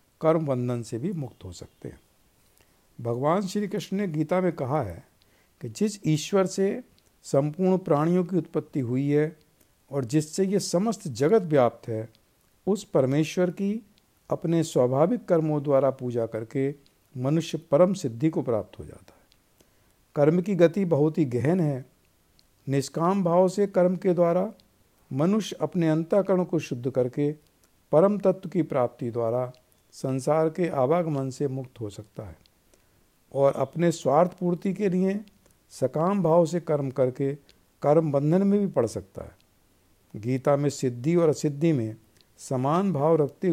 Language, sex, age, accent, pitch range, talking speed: Hindi, male, 60-79, native, 125-175 Hz, 150 wpm